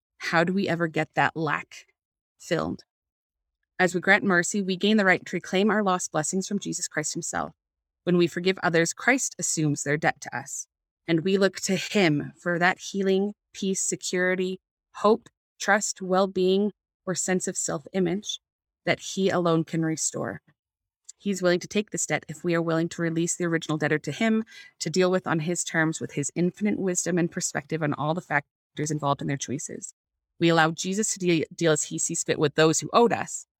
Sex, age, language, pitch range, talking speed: female, 20-39, English, 155-185 Hz, 195 wpm